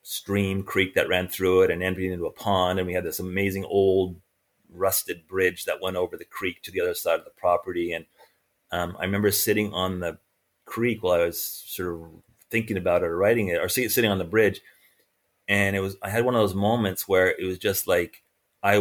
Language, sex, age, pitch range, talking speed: English, male, 30-49, 90-105 Hz, 225 wpm